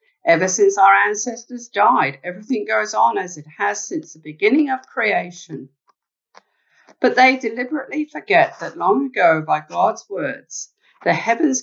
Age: 50-69